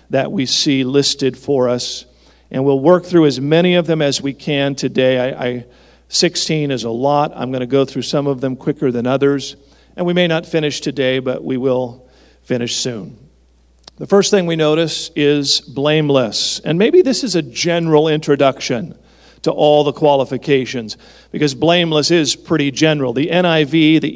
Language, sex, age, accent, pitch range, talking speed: English, male, 50-69, American, 135-175 Hz, 180 wpm